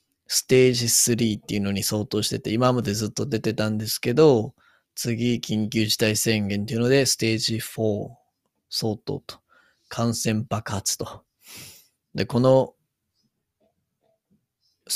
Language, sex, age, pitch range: Japanese, male, 20-39, 105-125 Hz